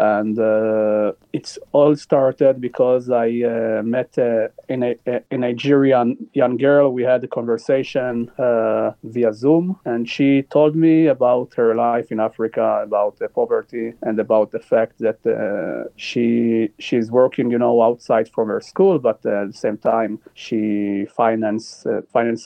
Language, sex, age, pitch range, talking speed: English, male, 30-49, 110-135 Hz, 155 wpm